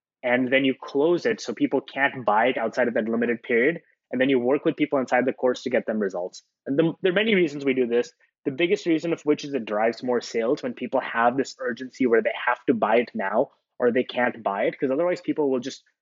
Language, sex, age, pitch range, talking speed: English, male, 20-39, 120-150 Hz, 260 wpm